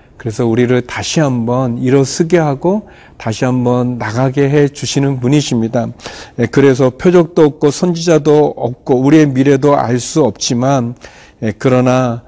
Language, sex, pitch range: Korean, male, 120-145 Hz